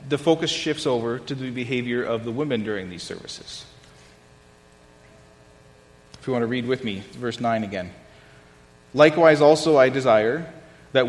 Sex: male